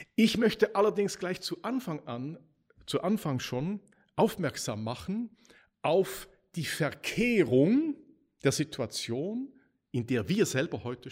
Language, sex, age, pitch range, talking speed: German, male, 50-69, 130-205 Hz, 110 wpm